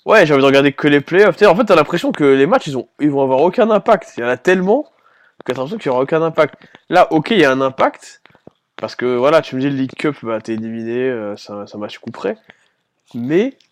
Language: French